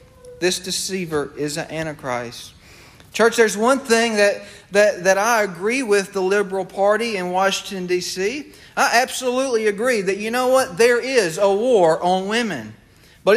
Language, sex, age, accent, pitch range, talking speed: English, male, 40-59, American, 190-250 Hz, 155 wpm